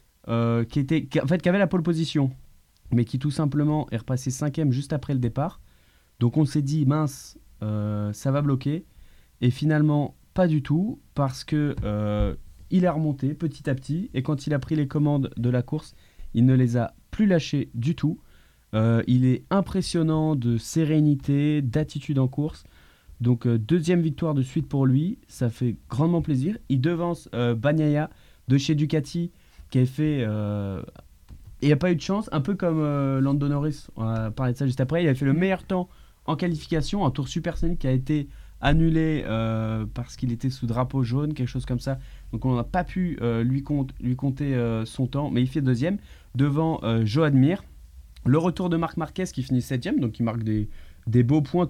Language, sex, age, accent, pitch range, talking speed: French, male, 20-39, French, 120-155 Hz, 205 wpm